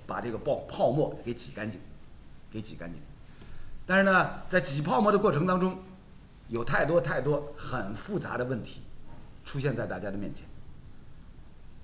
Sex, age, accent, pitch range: male, 50-69, native, 130-195 Hz